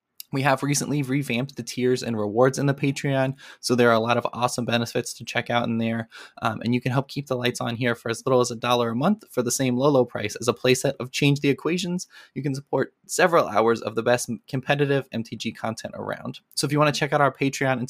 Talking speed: 260 wpm